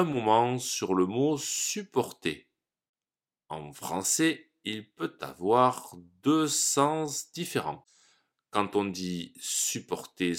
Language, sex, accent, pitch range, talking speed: French, male, French, 90-150 Hz, 100 wpm